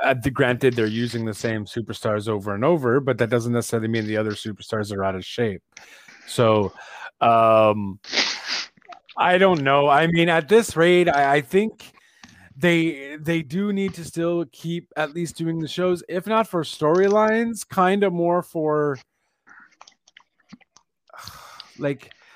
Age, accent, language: 30-49, American, English